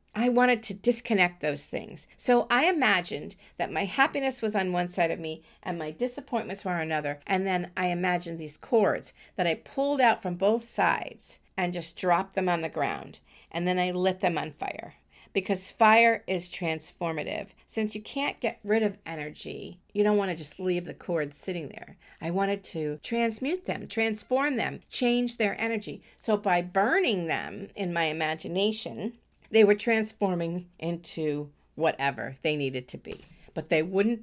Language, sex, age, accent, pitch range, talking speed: English, female, 50-69, American, 160-220 Hz, 175 wpm